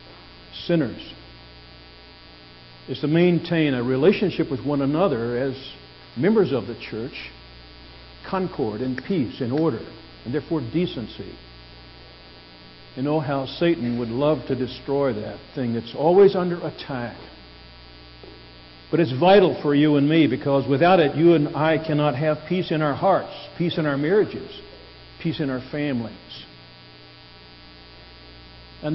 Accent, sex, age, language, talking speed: American, male, 60-79, English, 135 wpm